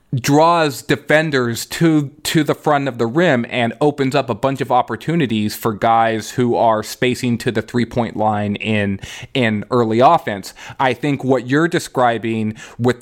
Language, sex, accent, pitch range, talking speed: English, male, American, 115-140 Hz, 160 wpm